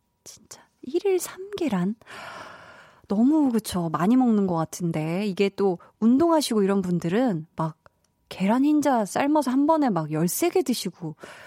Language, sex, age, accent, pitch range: Korean, female, 20-39, native, 180-265 Hz